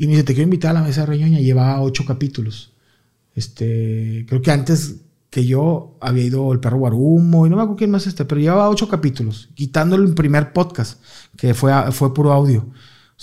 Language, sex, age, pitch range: Spanish, male, 30-49, 125-165 Hz